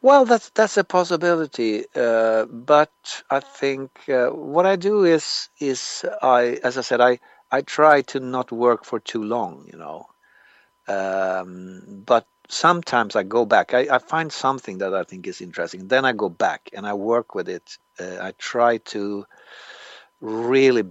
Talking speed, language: 170 wpm, English